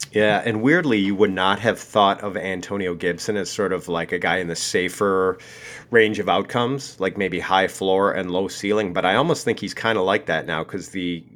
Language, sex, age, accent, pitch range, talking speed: English, male, 40-59, American, 90-110 Hz, 220 wpm